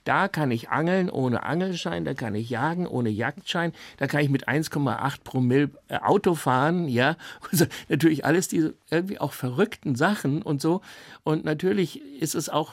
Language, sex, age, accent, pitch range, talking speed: German, male, 60-79, German, 135-170 Hz, 170 wpm